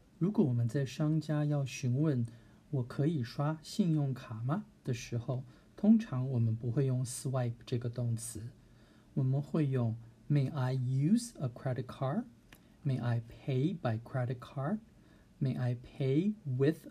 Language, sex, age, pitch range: Chinese, male, 50-69, 120-155 Hz